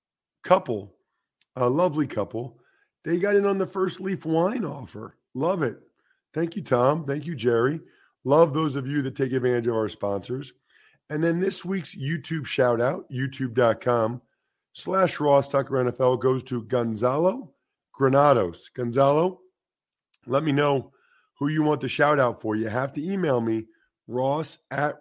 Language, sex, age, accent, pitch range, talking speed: English, male, 50-69, American, 125-165 Hz, 155 wpm